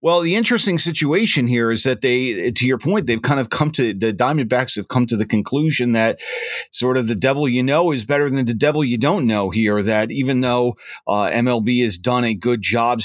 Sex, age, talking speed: male, 40-59, 225 wpm